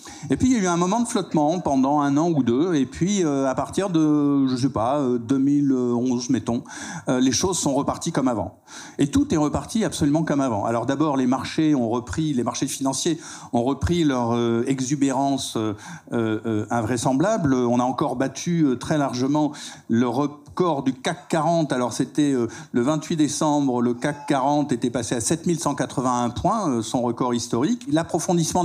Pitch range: 125-155 Hz